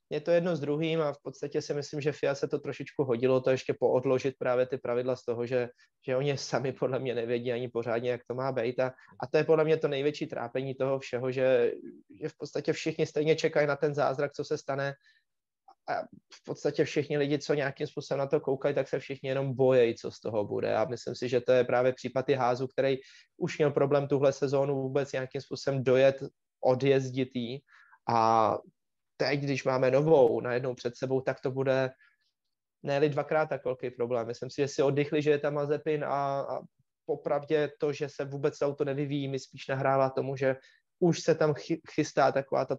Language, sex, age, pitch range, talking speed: Czech, male, 20-39, 130-150 Hz, 200 wpm